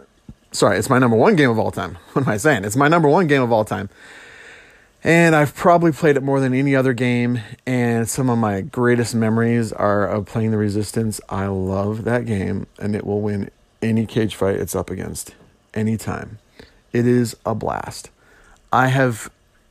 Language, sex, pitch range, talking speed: English, male, 110-135 Hz, 190 wpm